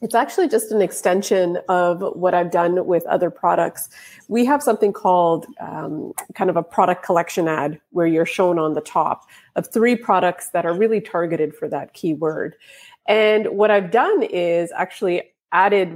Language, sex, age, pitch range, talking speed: English, female, 30-49, 175-225 Hz, 175 wpm